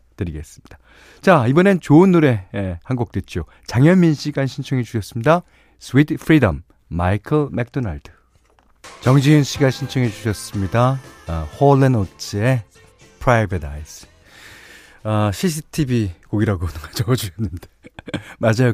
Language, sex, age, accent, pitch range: Korean, male, 40-59, native, 90-135 Hz